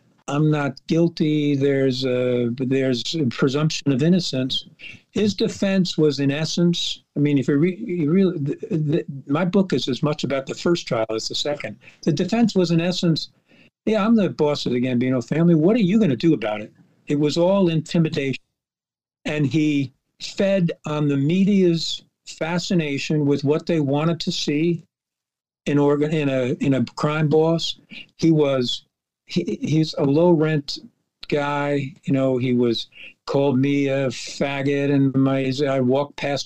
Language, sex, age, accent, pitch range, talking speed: English, male, 60-79, American, 140-170 Hz, 160 wpm